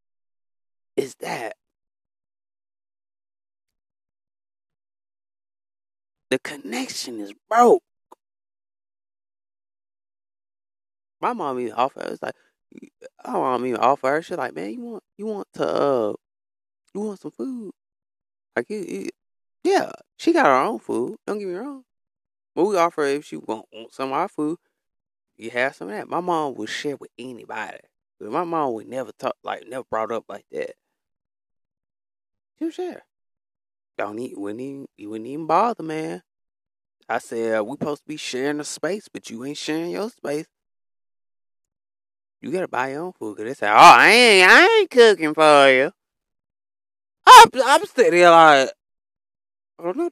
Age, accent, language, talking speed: 20-39, American, English, 150 wpm